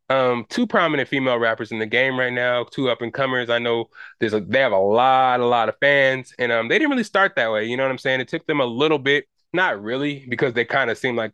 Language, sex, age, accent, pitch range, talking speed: English, male, 20-39, American, 115-140 Hz, 280 wpm